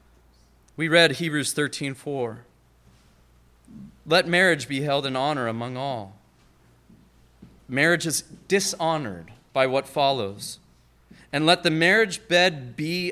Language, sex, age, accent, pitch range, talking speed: English, male, 30-49, American, 115-170 Hz, 115 wpm